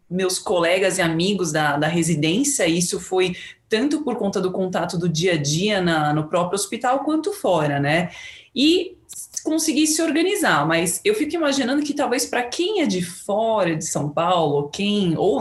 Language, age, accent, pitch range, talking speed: Portuguese, 20-39, Brazilian, 170-235 Hz, 170 wpm